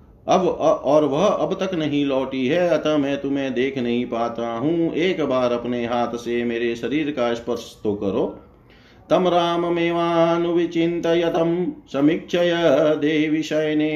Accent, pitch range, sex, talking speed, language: native, 115-155 Hz, male, 140 wpm, Hindi